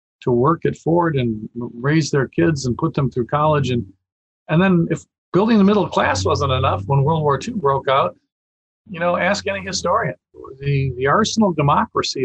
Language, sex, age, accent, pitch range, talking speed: English, male, 50-69, American, 125-175 Hz, 185 wpm